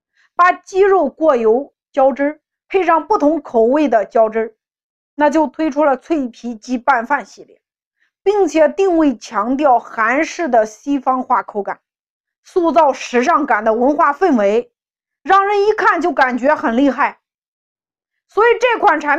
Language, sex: Chinese, female